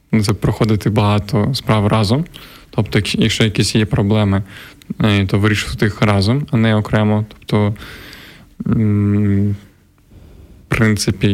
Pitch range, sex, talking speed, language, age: 105-120 Hz, male, 100 wpm, Ukrainian, 20-39